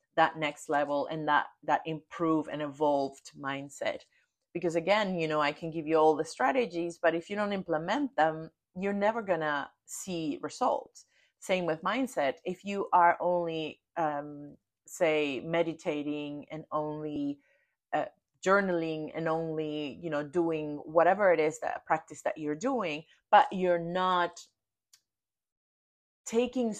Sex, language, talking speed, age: female, English, 140 wpm, 30-49